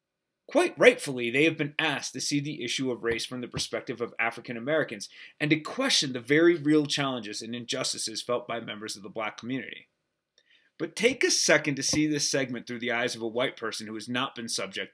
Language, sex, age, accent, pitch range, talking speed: English, male, 30-49, American, 120-160 Hz, 215 wpm